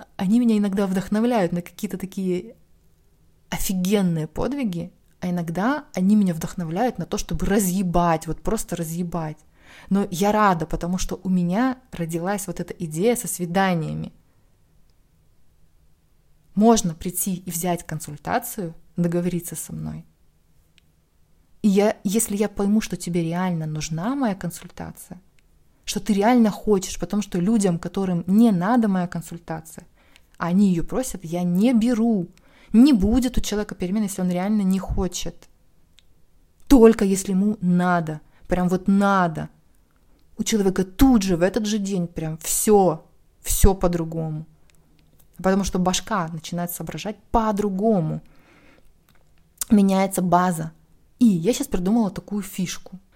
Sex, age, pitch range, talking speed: female, 20-39, 165-210 Hz, 130 wpm